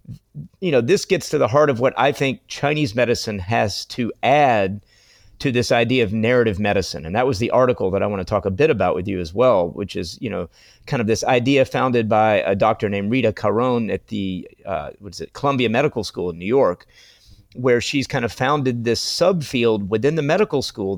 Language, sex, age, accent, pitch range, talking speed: English, male, 40-59, American, 105-140 Hz, 220 wpm